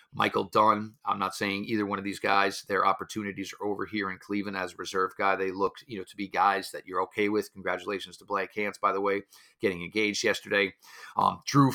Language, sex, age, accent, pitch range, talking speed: English, male, 40-59, American, 100-110 Hz, 220 wpm